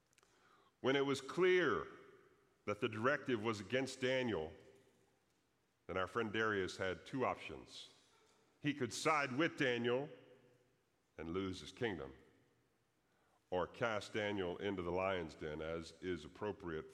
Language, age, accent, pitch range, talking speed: English, 50-69, American, 95-130 Hz, 130 wpm